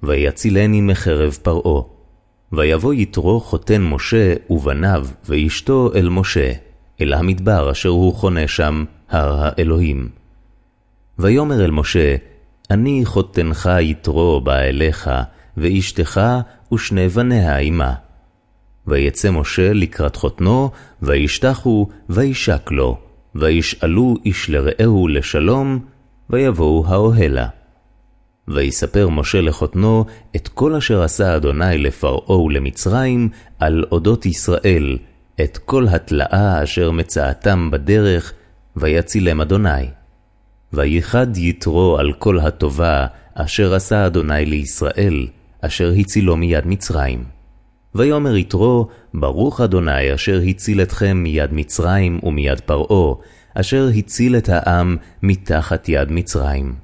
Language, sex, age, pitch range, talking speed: Hebrew, male, 30-49, 75-105 Hz, 100 wpm